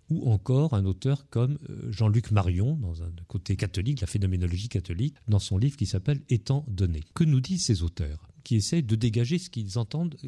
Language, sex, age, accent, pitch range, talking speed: French, male, 40-59, French, 95-130 Hz, 195 wpm